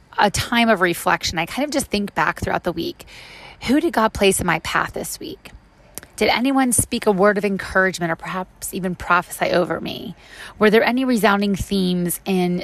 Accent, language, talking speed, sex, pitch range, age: American, English, 195 wpm, female, 175-210 Hz, 30-49